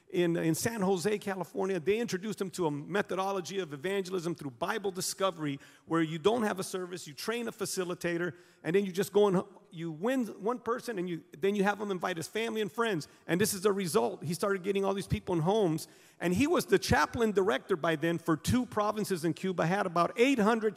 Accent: American